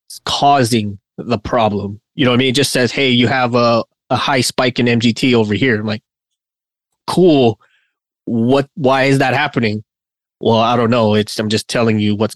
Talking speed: 195 wpm